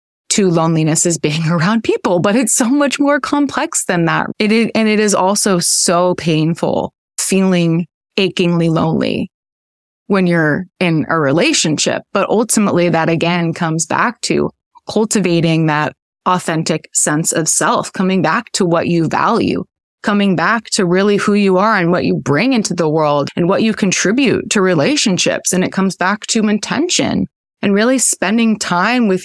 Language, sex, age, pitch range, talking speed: English, female, 20-39, 165-215 Hz, 165 wpm